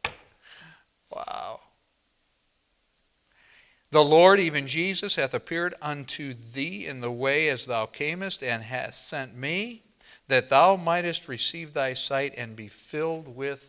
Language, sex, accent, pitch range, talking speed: English, male, American, 125-170 Hz, 125 wpm